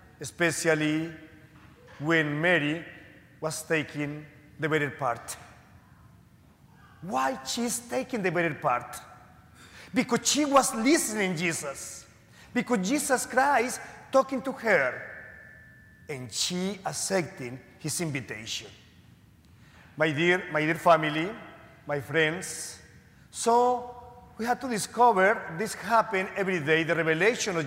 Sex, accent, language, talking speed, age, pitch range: male, Mexican, English, 110 wpm, 40-59, 155-235 Hz